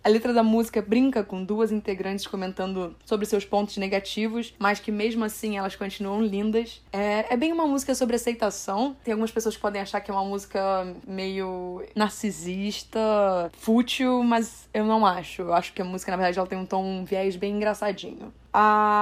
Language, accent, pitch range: Portuguese, Brazilian, 190-225 Hz